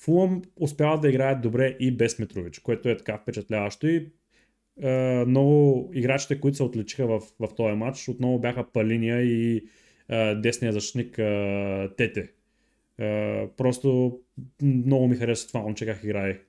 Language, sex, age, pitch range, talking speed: Bulgarian, male, 20-39, 110-140 Hz, 150 wpm